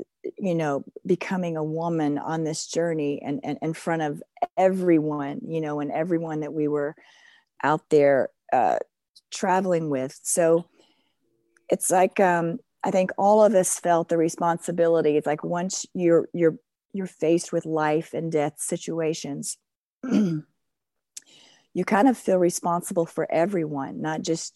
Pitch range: 155-180 Hz